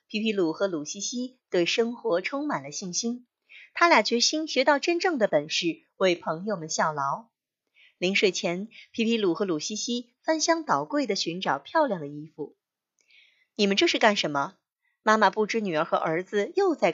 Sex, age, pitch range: female, 30-49, 190-305 Hz